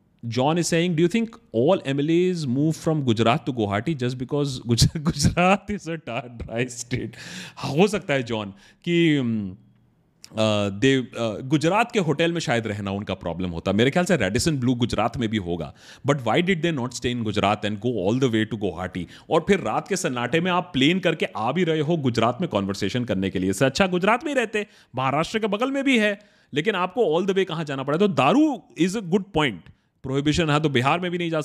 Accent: native